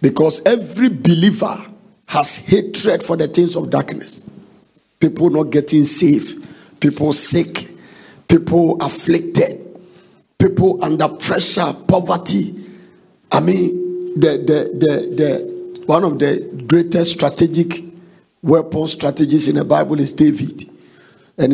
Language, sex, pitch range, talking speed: English, male, 150-185 Hz, 115 wpm